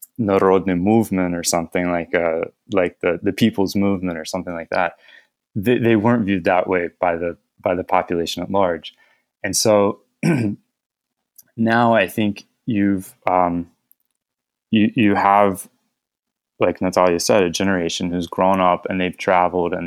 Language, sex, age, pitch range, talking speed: English, male, 20-39, 90-100 Hz, 150 wpm